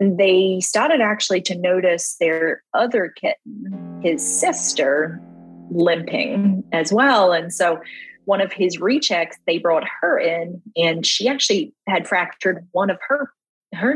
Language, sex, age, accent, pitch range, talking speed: English, female, 30-49, American, 165-195 Hz, 140 wpm